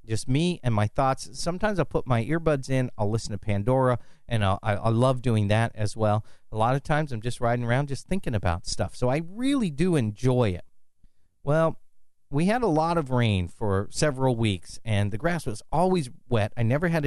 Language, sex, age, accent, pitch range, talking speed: English, male, 40-59, American, 105-145 Hz, 205 wpm